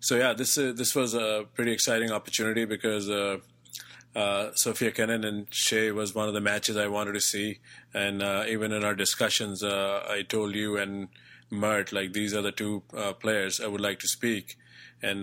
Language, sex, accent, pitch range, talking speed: English, male, Indian, 105-120 Hz, 200 wpm